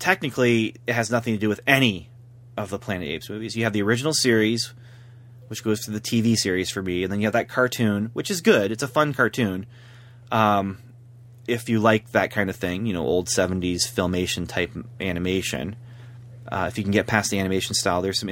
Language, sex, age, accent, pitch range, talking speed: English, male, 30-49, American, 105-120 Hz, 215 wpm